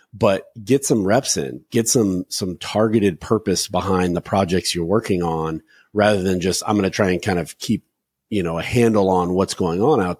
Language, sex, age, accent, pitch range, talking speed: English, male, 30-49, American, 90-115 Hz, 210 wpm